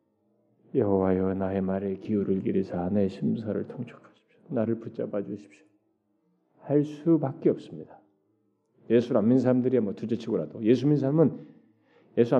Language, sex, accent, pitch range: Korean, male, native, 95-140 Hz